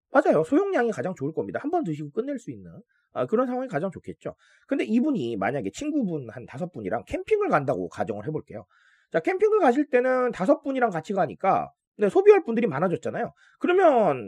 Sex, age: male, 30-49